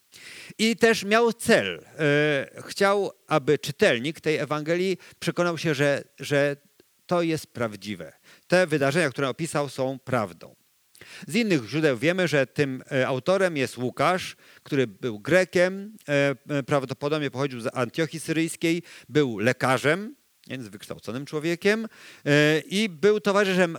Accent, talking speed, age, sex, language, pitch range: native, 125 wpm, 50-69, male, Polish, 130-175 Hz